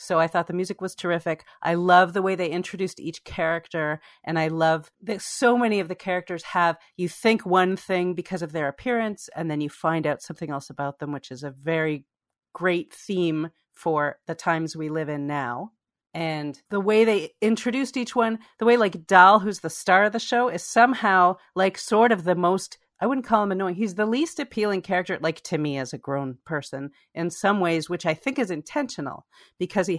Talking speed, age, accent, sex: 210 wpm, 40-59, American, female